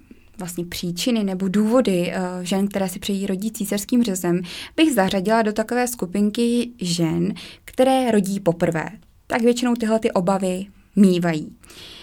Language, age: Czech, 20-39